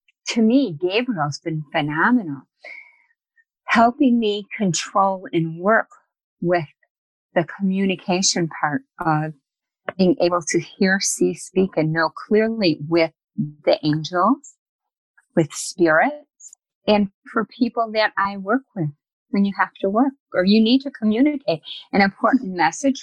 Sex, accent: female, American